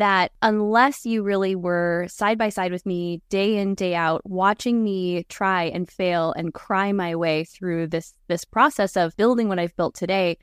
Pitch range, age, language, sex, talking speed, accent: 175-215 Hz, 10-29, English, female, 180 wpm, American